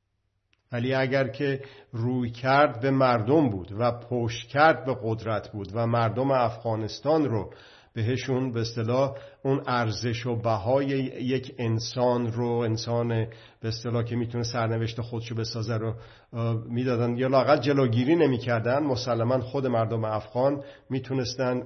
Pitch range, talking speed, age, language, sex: 110-125 Hz, 125 wpm, 50-69, Persian, male